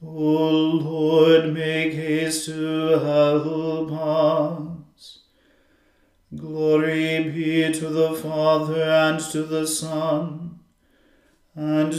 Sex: male